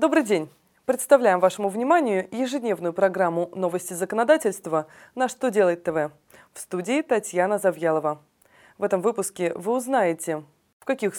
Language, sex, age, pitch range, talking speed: Russian, female, 20-39, 180-245 Hz, 130 wpm